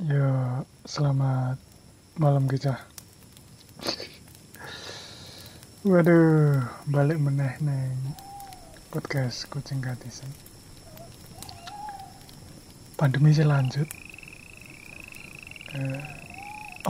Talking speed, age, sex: 55 wpm, 30-49, male